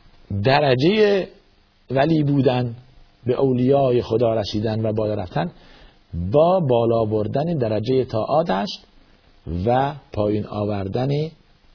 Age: 50-69